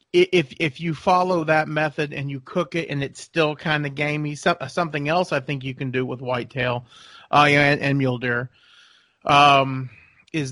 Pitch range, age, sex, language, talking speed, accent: 130-155 Hz, 40-59, male, English, 190 wpm, American